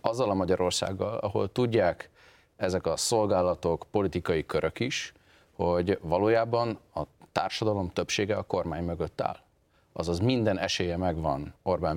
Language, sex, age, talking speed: Hungarian, male, 30-49, 125 wpm